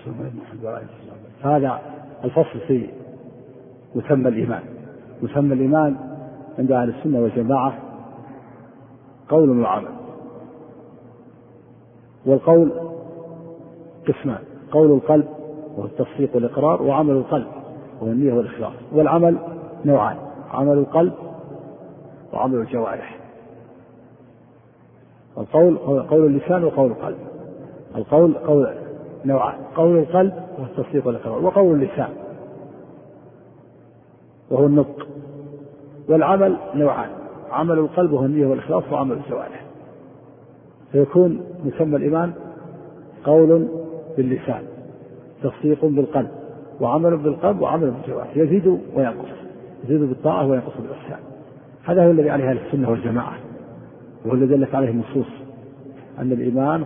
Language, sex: Arabic, male